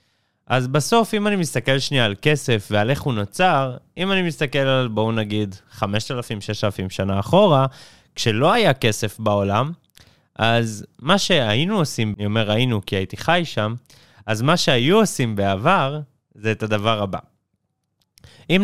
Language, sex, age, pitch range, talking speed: Hebrew, male, 20-39, 105-150 Hz, 150 wpm